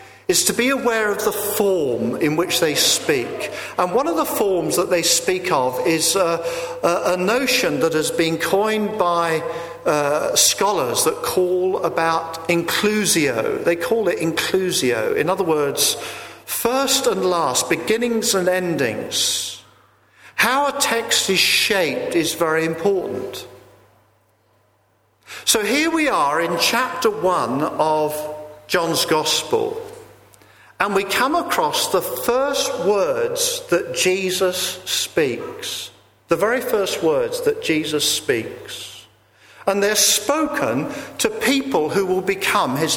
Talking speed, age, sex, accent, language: 130 wpm, 50-69, male, British, English